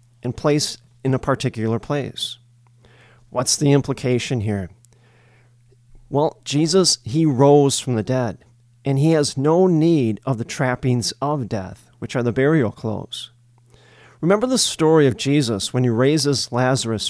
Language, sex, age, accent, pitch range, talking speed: English, male, 40-59, American, 120-150 Hz, 145 wpm